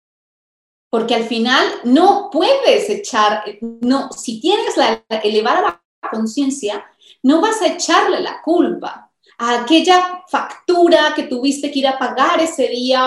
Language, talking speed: Spanish, 140 wpm